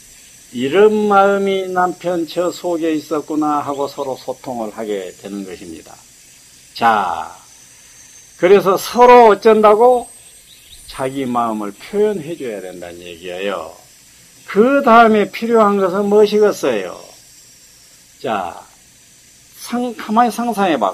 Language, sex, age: Korean, male, 50-69